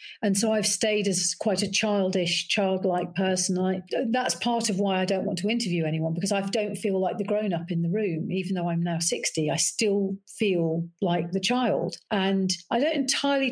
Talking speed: 205 wpm